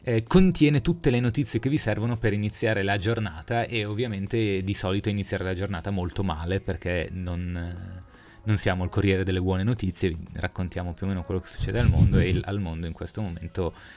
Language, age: Italian, 30-49